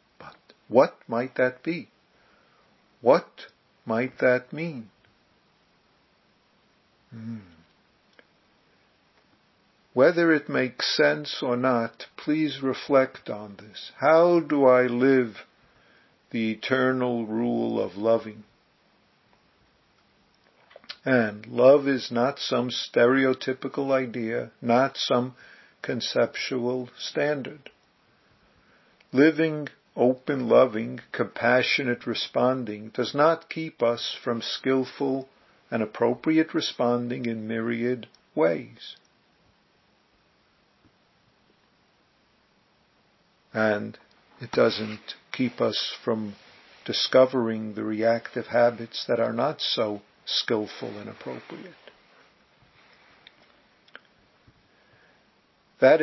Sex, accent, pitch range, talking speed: male, American, 115-135 Hz, 80 wpm